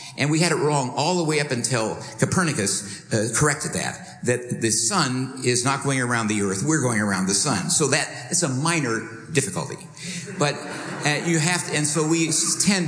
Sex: male